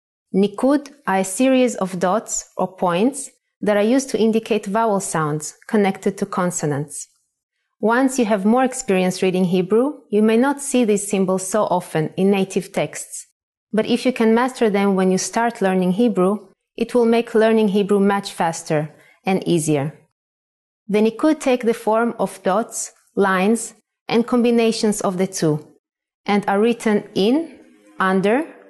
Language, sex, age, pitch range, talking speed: English, female, 30-49, 190-235 Hz, 155 wpm